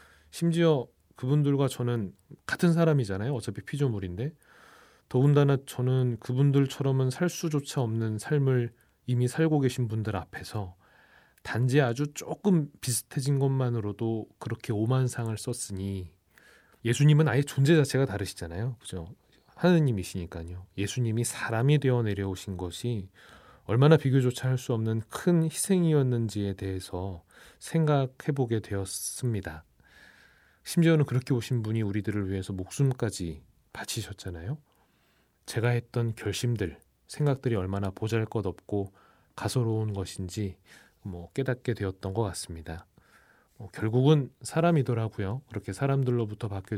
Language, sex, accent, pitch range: Korean, male, native, 100-135 Hz